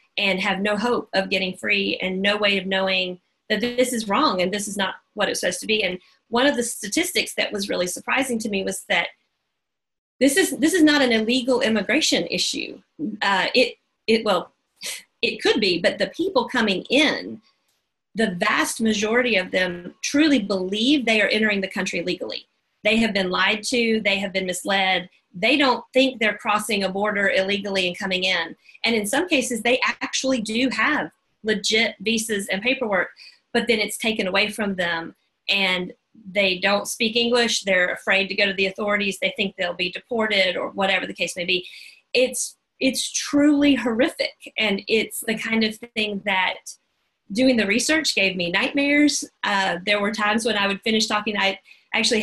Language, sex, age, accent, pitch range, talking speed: English, female, 40-59, American, 195-245 Hz, 185 wpm